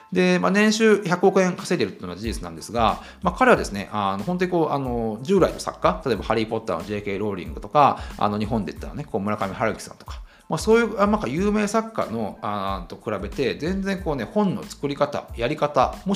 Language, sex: Japanese, male